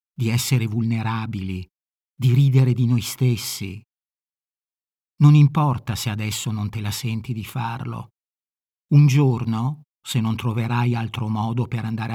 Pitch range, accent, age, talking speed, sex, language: 115-140 Hz, native, 50-69, 135 wpm, male, Italian